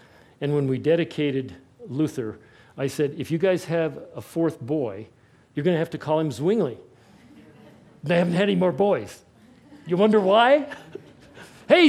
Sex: male